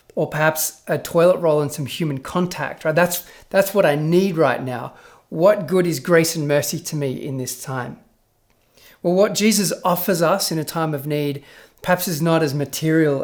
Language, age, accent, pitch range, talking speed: English, 40-59, Australian, 140-175 Hz, 195 wpm